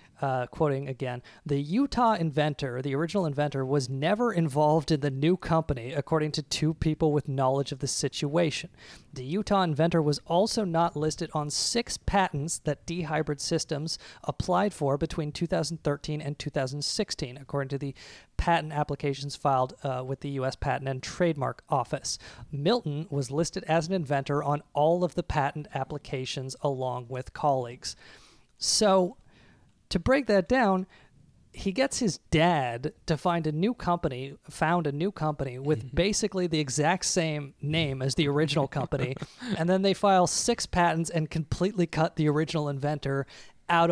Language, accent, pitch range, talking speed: English, American, 140-175 Hz, 155 wpm